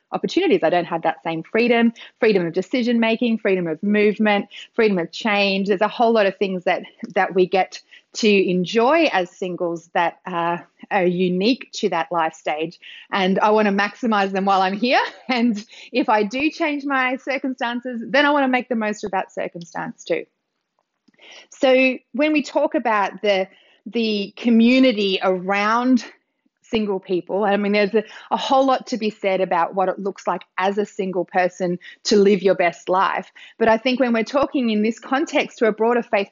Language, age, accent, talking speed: English, 30-49, Australian, 185 wpm